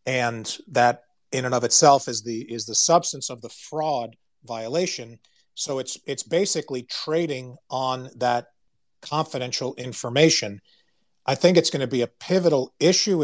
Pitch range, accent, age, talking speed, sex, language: 125-150 Hz, American, 40-59, 150 wpm, male, English